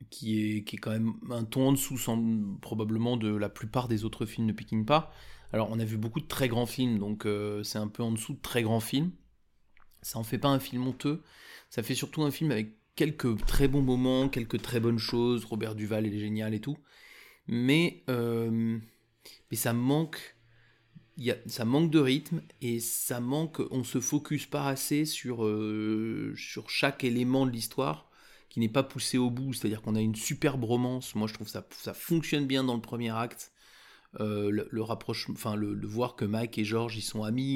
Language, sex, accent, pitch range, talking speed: French, male, French, 110-135 Hz, 210 wpm